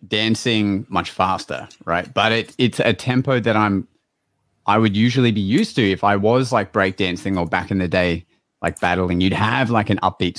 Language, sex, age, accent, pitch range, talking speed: English, male, 30-49, Australian, 100-120 Hz, 200 wpm